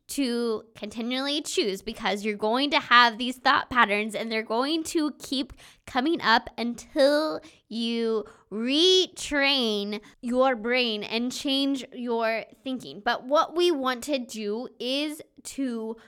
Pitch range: 230-280 Hz